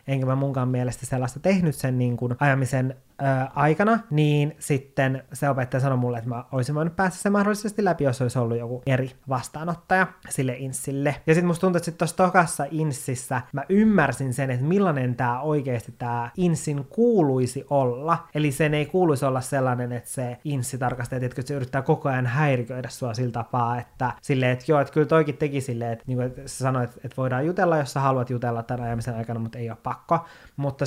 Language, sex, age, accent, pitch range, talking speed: Finnish, male, 20-39, native, 125-150 Hz, 195 wpm